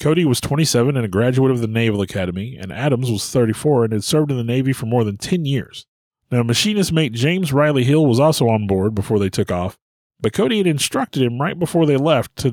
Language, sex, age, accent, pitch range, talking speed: English, male, 30-49, American, 110-150 Hz, 235 wpm